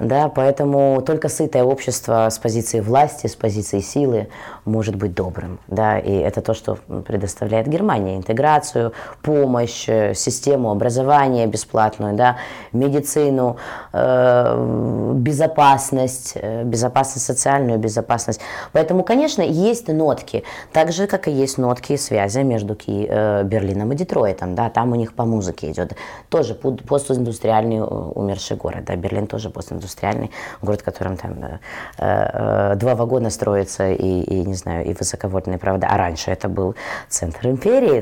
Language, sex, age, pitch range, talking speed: Russian, female, 20-39, 105-140 Hz, 135 wpm